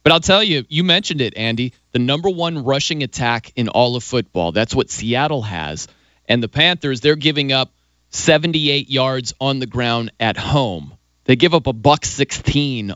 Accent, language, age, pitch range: American, English, 30-49, 120-160 Hz